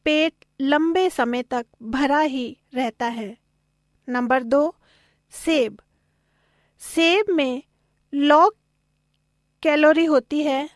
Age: 40-59